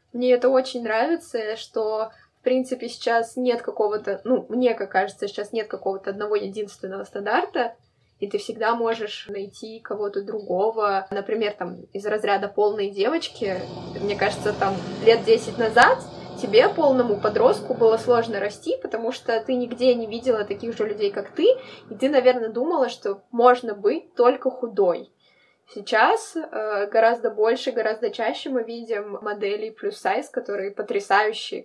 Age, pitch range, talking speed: 10-29, 210-255 Hz, 145 wpm